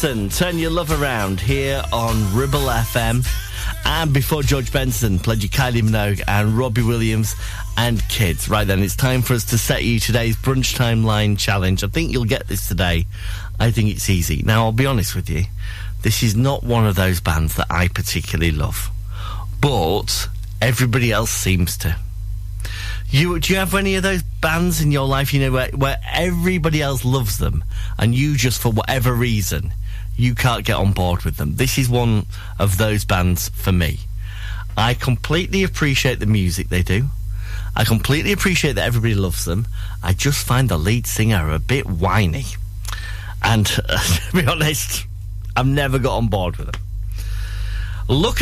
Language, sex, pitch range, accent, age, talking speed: English, male, 100-125 Hz, British, 40-59, 175 wpm